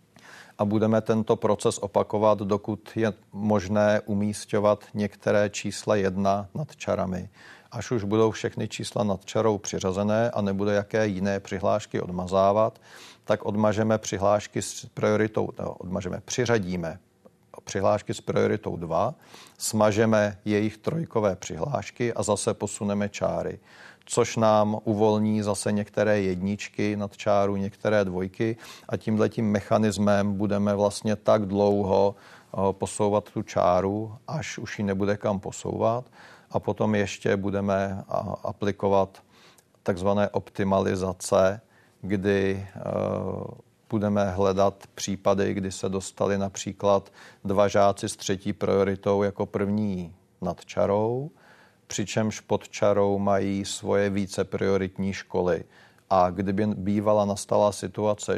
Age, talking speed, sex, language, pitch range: 40-59, 110 wpm, male, Czech, 100-110 Hz